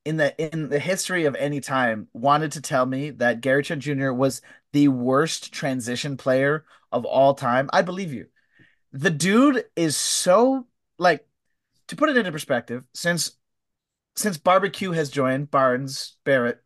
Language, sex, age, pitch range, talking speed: English, male, 30-49, 135-185 Hz, 160 wpm